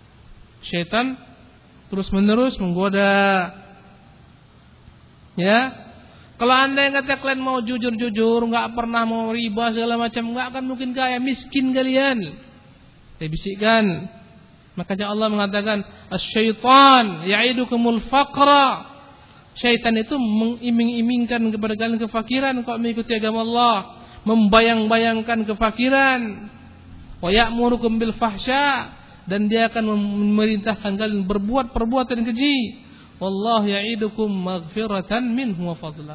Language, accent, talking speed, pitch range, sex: Indonesian, native, 100 wpm, 185-255 Hz, male